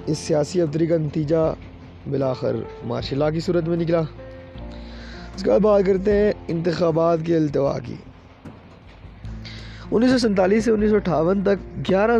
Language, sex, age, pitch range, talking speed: Urdu, male, 20-39, 135-175 Hz, 150 wpm